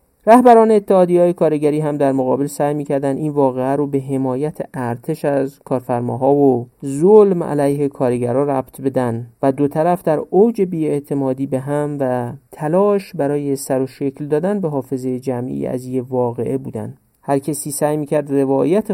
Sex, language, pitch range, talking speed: male, Persian, 130-165 Hz, 160 wpm